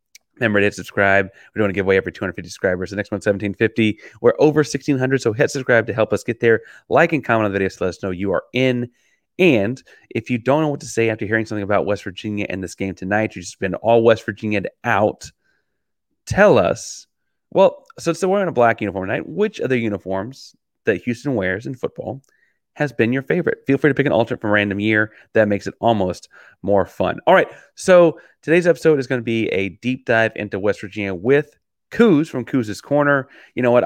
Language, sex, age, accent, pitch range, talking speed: English, male, 30-49, American, 105-145 Hz, 230 wpm